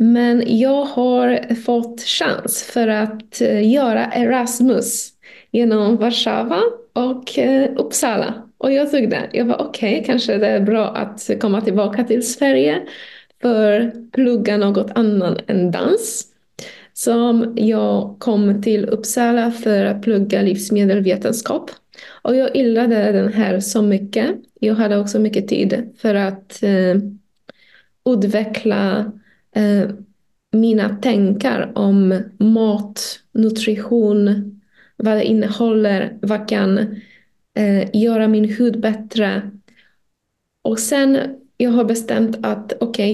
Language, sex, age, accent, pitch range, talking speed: Swedish, female, 20-39, native, 205-240 Hz, 115 wpm